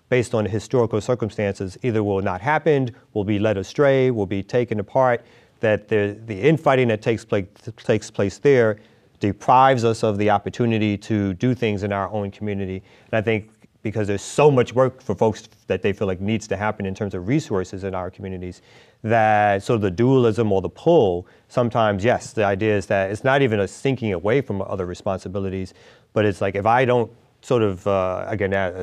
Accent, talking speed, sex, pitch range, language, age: American, 200 wpm, male, 100-120 Hz, English, 30-49